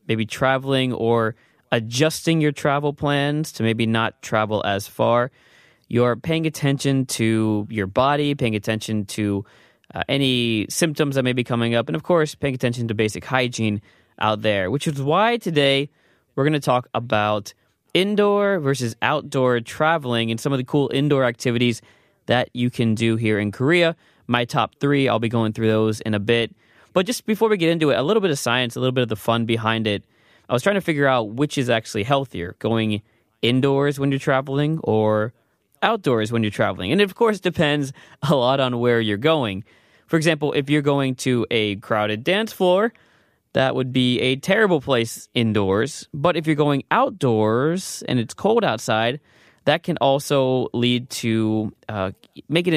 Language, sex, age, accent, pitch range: Korean, male, 20-39, American, 110-145 Hz